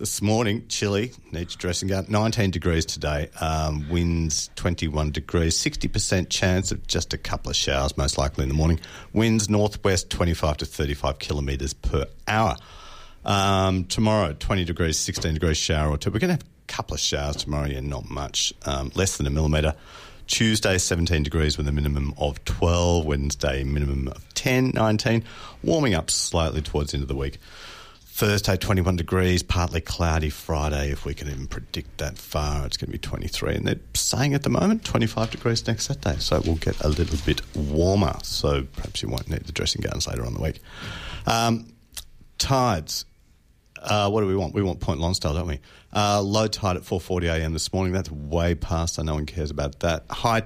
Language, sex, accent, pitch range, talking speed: English, male, Australian, 75-100 Hz, 190 wpm